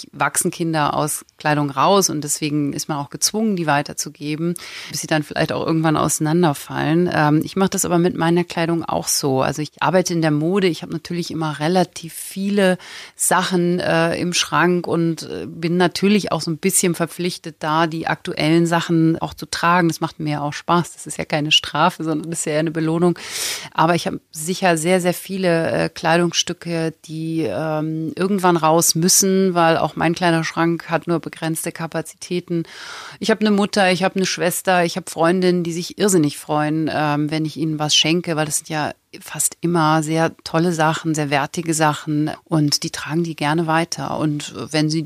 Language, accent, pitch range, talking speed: German, German, 155-175 Hz, 180 wpm